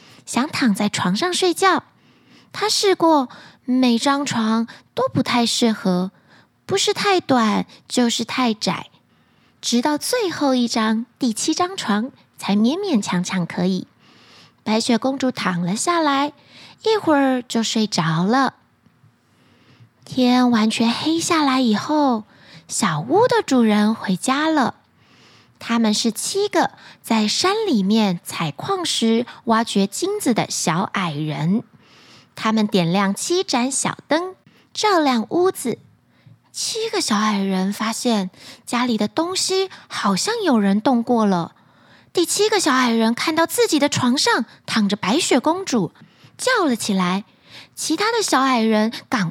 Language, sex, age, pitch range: Chinese, female, 20-39, 210-320 Hz